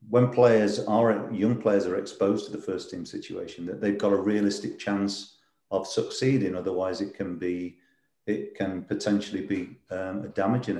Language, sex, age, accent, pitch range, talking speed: English, male, 40-59, British, 95-105 Hz, 170 wpm